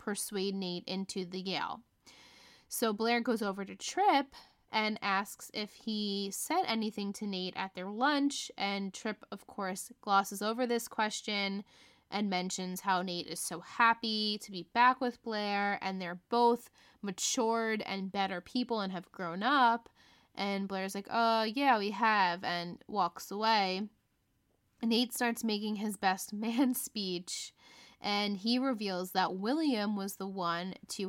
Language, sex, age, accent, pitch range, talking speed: English, female, 20-39, American, 190-235 Hz, 150 wpm